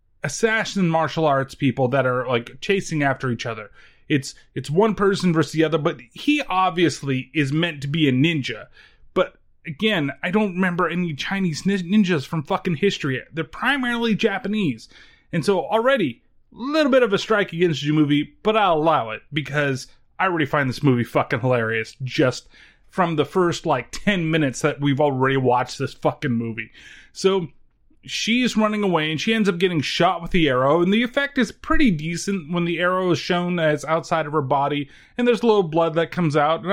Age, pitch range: 30-49, 145-200 Hz